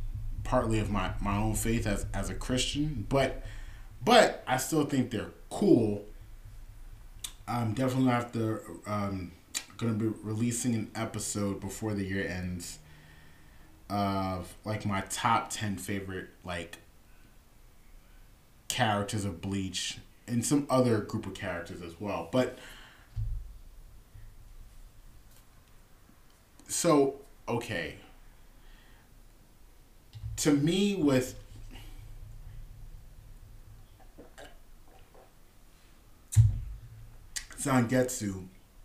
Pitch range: 100-130 Hz